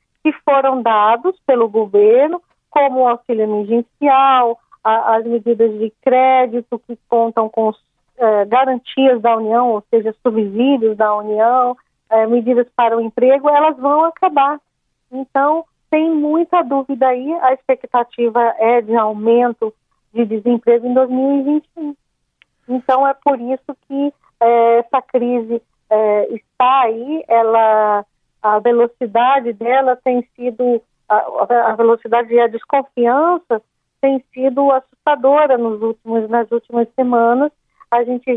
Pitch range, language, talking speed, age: 230-270 Hz, Portuguese, 120 wpm, 40-59